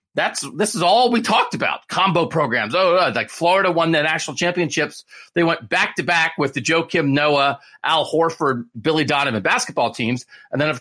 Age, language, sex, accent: 40-59, English, male, American